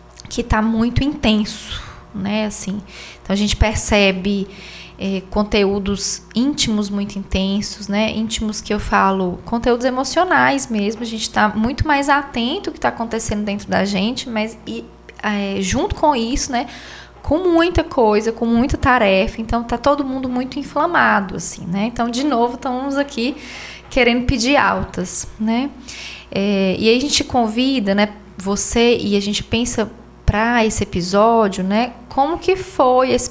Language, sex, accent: Portuguese, female, Brazilian